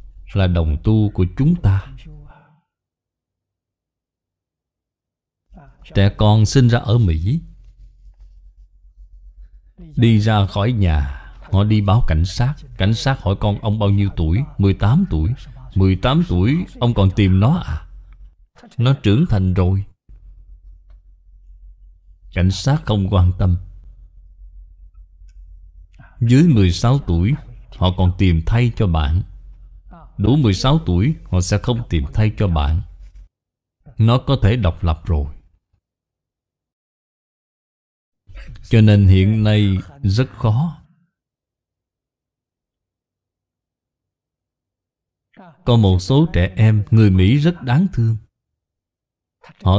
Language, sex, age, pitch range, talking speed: Vietnamese, male, 20-39, 85-120 Hz, 105 wpm